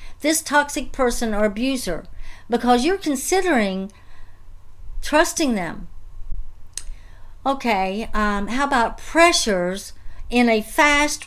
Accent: American